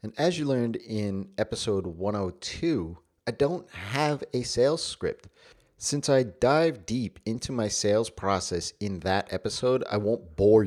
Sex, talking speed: male, 150 wpm